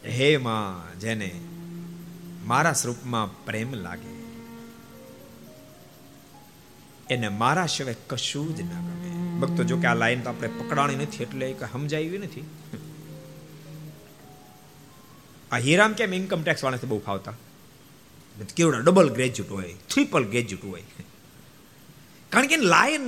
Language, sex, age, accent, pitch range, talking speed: Gujarati, male, 50-69, native, 115-185 Hz, 35 wpm